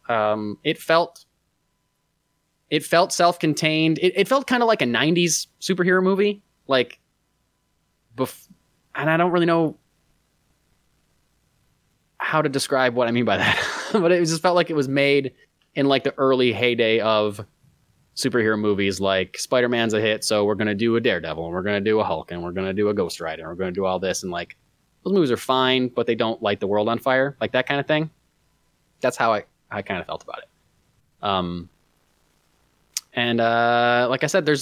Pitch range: 110-150 Hz